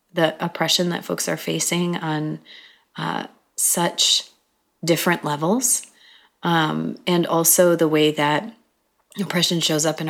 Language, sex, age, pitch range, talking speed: English, female, 30-49, 165-195 Hz, 125 wpm